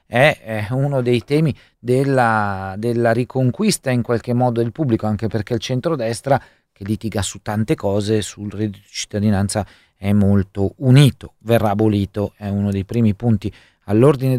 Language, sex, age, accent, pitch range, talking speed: Italian, male, 40-59, native, 105-130 Hz, 150 wpm